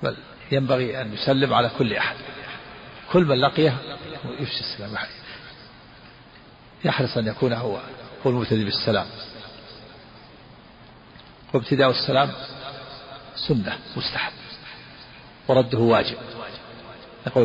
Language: Arabic